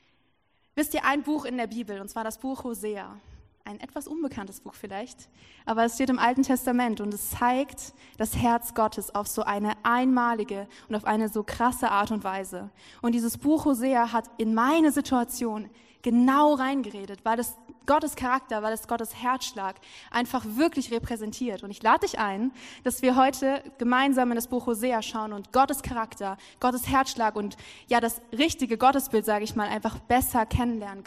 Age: 20-39